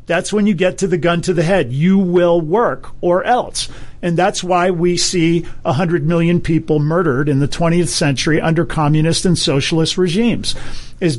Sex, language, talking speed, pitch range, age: male, English, 180 wpm, 165-195 Hz, 50-69